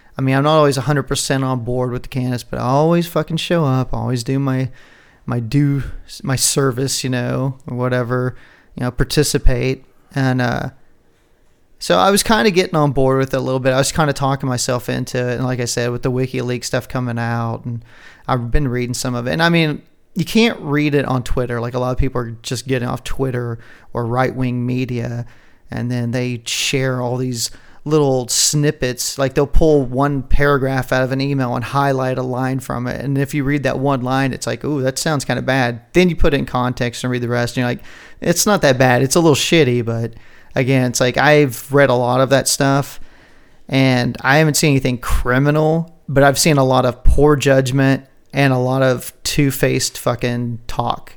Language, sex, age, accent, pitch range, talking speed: English, male, 30-49, American, 125-140 Hz, 215 wpm